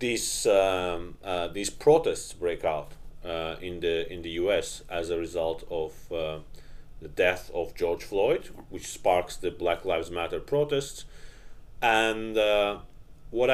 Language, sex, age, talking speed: English, male, 40-59, 145 wpm